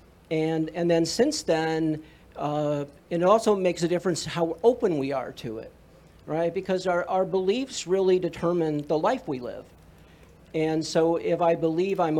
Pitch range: 150-175 Hz